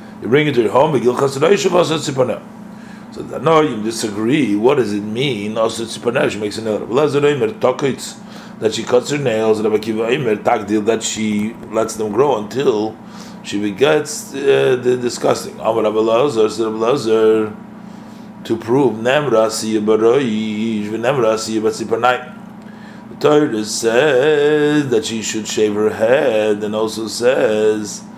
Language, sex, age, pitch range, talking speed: English, male, 30-49, 110-165 Hz, 105 wpm